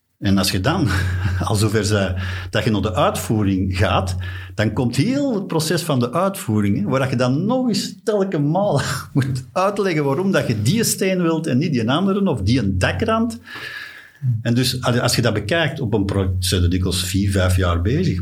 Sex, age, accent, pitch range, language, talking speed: male, 50-69, Dutch, 95-125 Hz, Dutch, 200 wpm